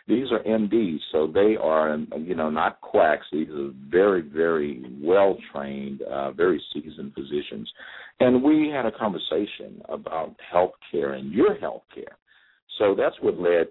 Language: English